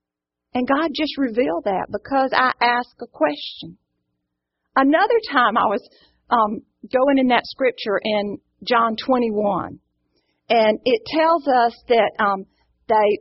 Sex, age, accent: female, 40-59, American